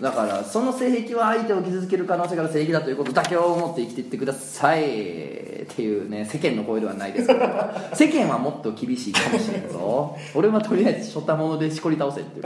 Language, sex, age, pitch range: Japanese, male, 20-39, 110-175 Hz